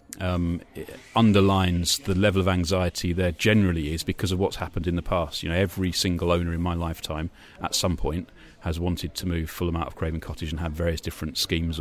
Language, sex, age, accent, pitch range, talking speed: English, male, 30-49, British, 85-100 Hz, 215 wpm